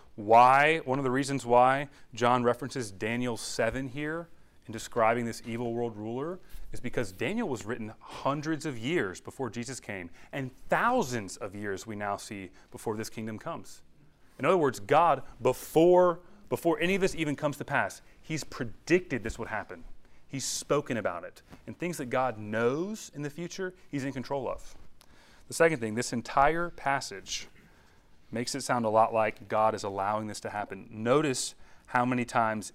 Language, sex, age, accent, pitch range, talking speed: English, male, 30-49, American, 105-135 Hz, 175 wpm